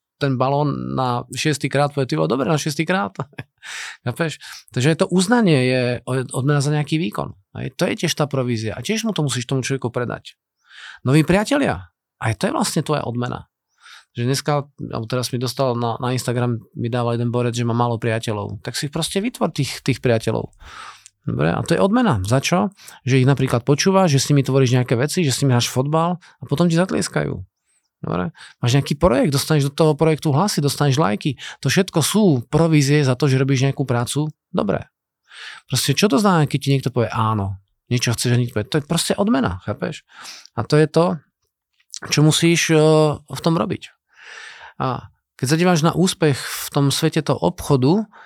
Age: 40-59